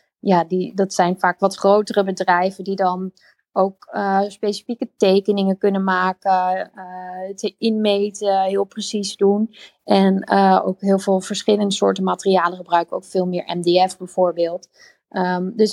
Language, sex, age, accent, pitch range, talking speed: Dutch, female, 20-39, Dutch, 185-220 Hz, 135 wpm